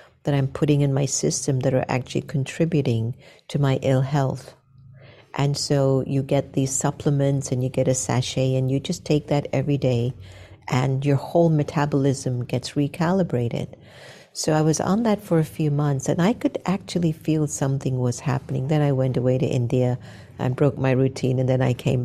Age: 50-69